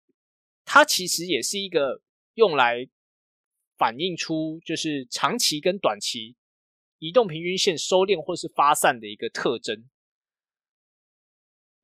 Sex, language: male, Chinese